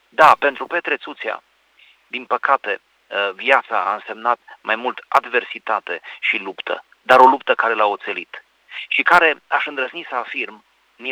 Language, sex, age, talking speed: Romanian, male, 40-59, 145 wpm